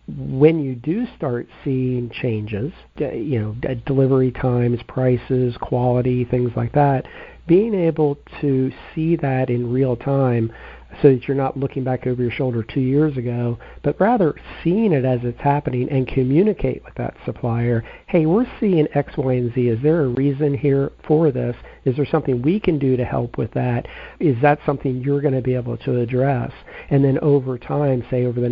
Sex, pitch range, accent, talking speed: male, 125-140 Hz, American, 185 wpm